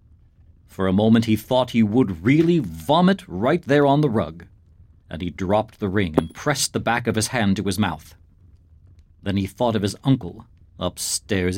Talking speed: 185 wpm